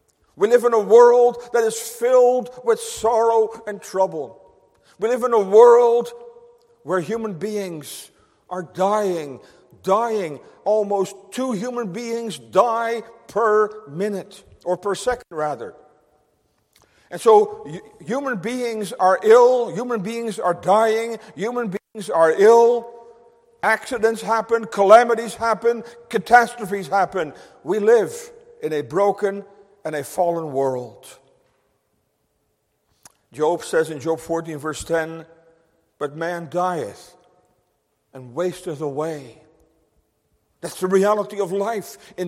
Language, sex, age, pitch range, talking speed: English, male, 50-69, 180-235 Hz, 120 wpm